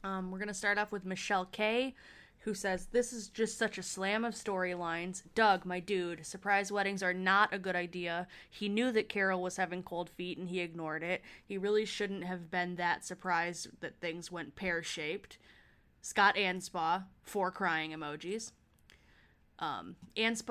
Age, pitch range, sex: 20-39, 175-200 Hz, female